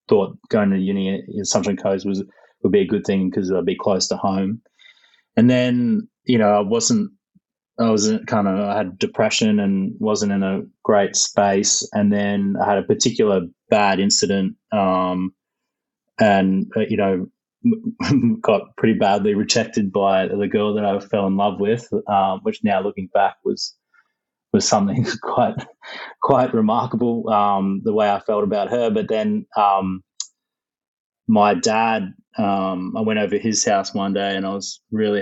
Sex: male